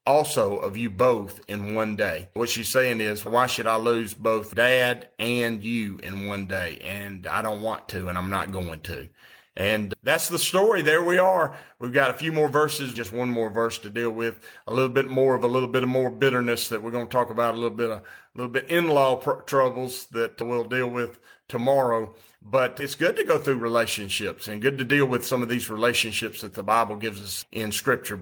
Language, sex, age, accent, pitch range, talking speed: English, male, 40-59, American, 110-135 Hz, 230 wpm